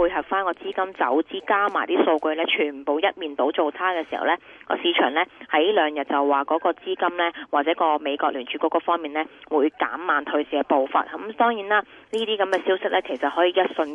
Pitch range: 150-185 Hz